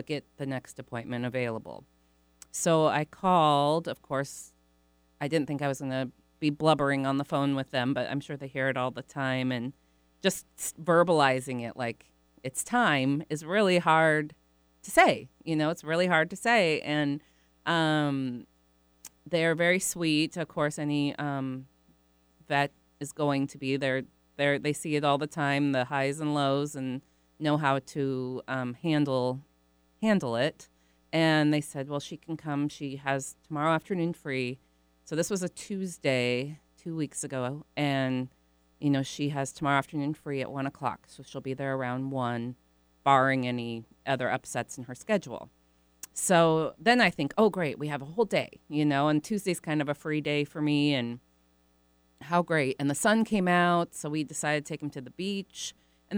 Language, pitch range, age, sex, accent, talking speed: English, 125-155 Hz, 30-49, female, American, 180 wpm